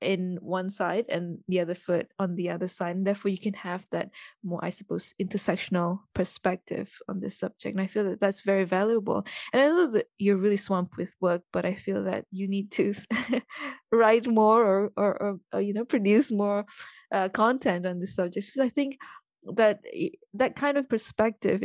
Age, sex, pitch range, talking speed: 20-39, female, 185-230 Hz, 195 wpm